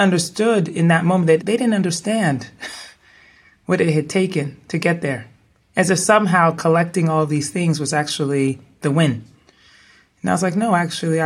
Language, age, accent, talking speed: English, 30-49, American, 170 wpm